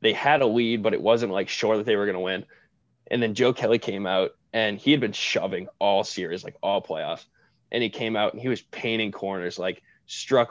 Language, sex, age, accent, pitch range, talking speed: English, male, 20-39, American, 105-120 Hz, 240 wpm